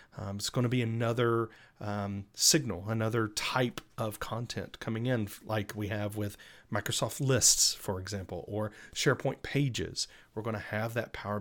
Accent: American